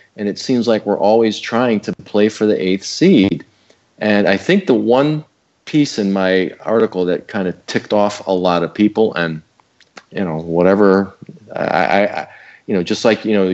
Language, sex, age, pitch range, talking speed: English, male, 40-59, 95-115 Hz, 190 wpm